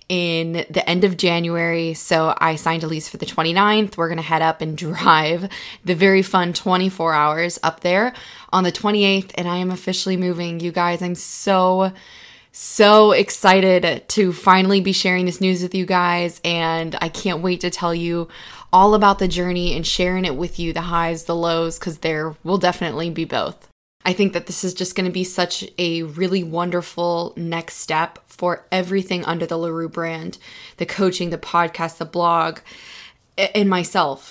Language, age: English, 20-39